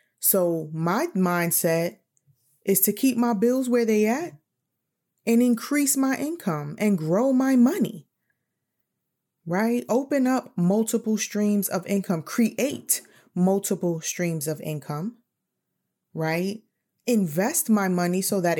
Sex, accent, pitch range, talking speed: female, American, 170-235 Hz, 120 wpm